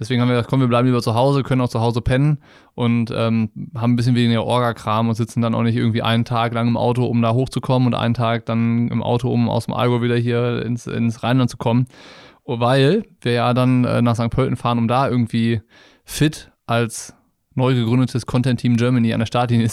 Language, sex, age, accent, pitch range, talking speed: German, male, 20-39, German, 120-135 Hz, 230 wpm